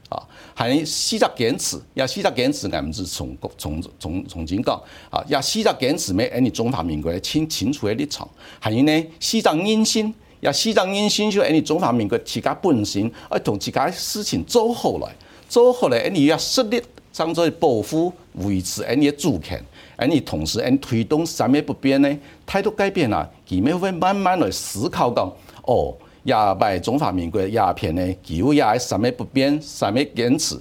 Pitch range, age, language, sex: 110-185 Hz, 50-69, Chinese, male